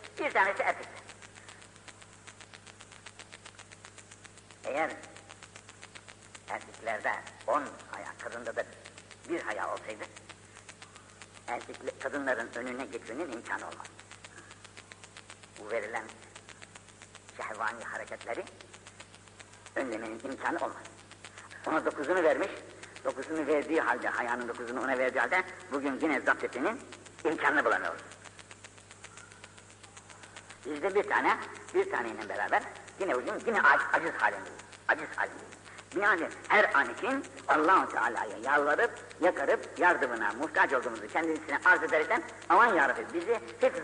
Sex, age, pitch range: female, 60-79, 105-160 Hz